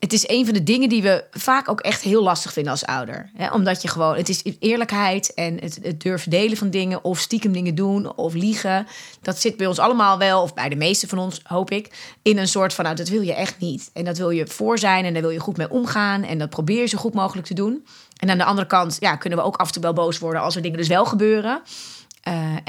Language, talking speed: Dutch, 275 wpm